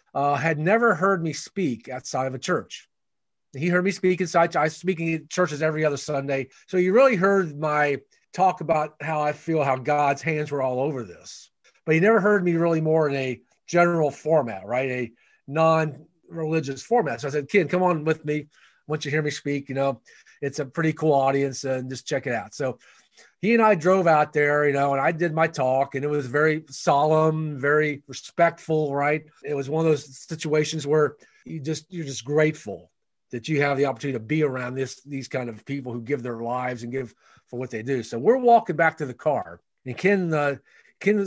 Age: 40-59